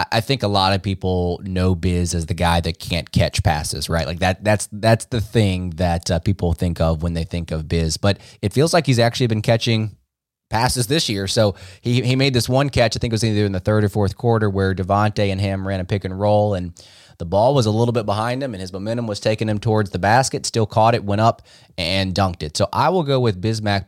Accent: American